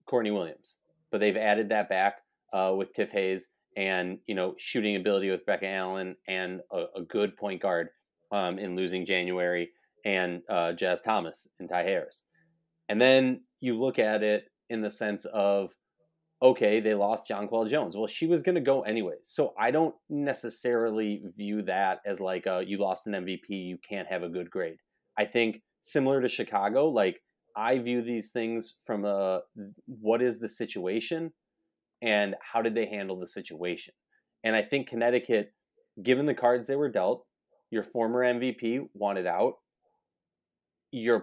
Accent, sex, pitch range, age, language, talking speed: American, male, 100-125 Hz, 30-49, English, 165 wpm